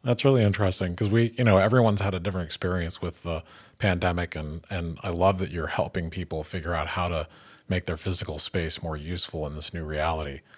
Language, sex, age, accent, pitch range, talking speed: English, male, 40-59, American, 80-100 Hz, 210 wpm